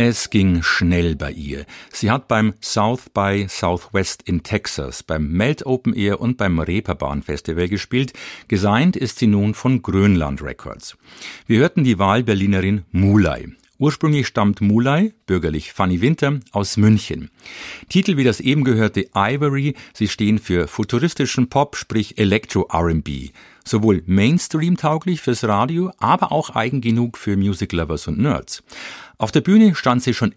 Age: 50-69